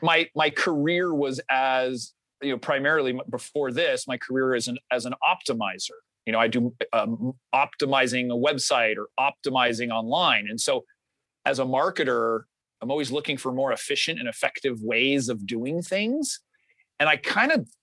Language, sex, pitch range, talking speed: English, male, 125-155 Hz, 170 wpm